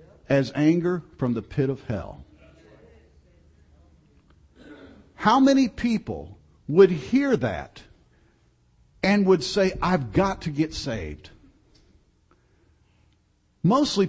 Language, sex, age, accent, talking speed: English, male, 50-69, American, 95 wpm